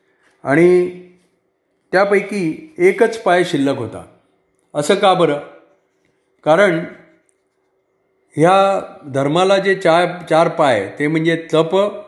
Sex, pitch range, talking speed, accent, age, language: male, 145-180 Hz, 80 wpm, native, 50-69, Marathi